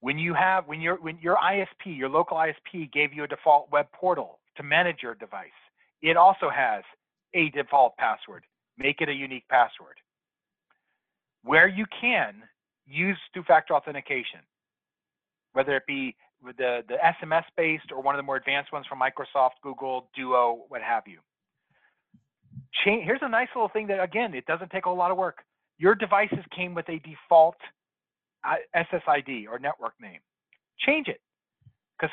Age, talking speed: 40-59, 160 wpm